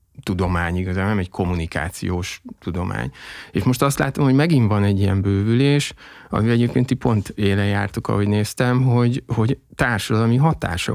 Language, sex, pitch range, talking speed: Hungarian, male, 100-125 Hz, 150 wpm